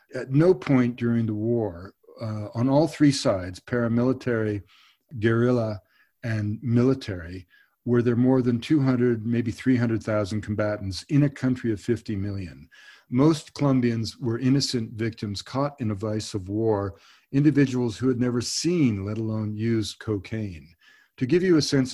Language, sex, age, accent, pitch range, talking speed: English, male, 50-69, American, 105-125 Hz, 150 wpm